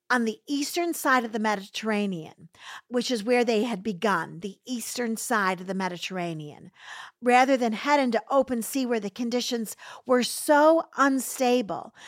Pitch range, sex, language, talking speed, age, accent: 200-245 Hz, female, English, 155 wpm, 50-69, American